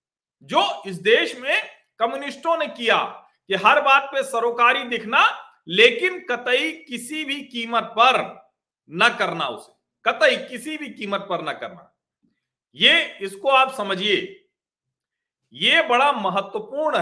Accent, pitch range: native, 210-310 Hz